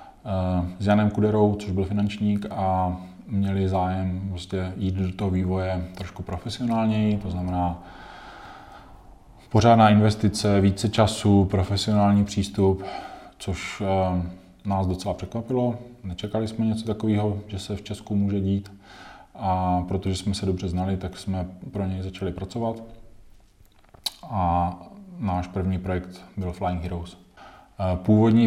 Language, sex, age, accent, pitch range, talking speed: Czech, male, 20-39, native, 90-105 Hz, 120 wpm